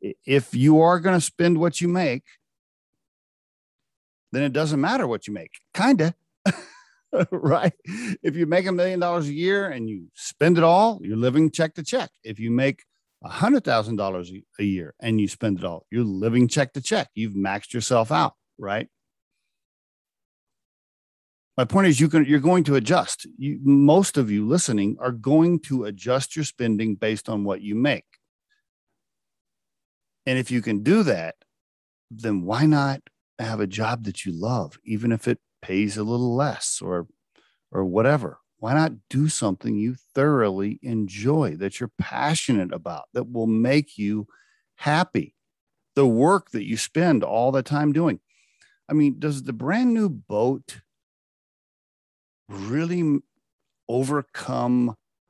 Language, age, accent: English, 50-69, American